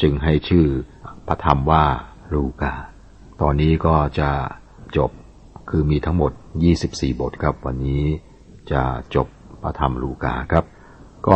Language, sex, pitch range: Thai, male, 70-85 Hz